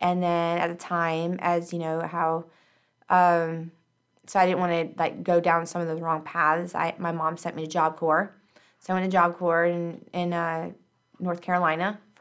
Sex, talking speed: female, 205 wpm